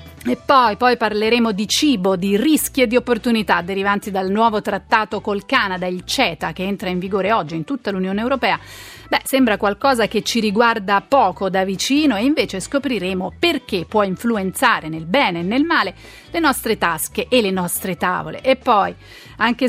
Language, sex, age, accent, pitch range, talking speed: Italian, female, 30-49, native, 190-245 Hz, 175 wpm